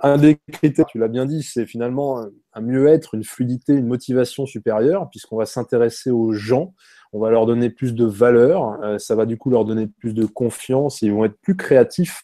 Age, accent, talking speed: 20-39, French, 205 wpm